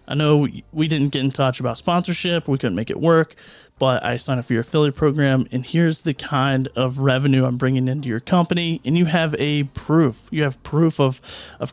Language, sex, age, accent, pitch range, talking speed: English, male, 30-49, American, 130-150 Hz, 220 wpm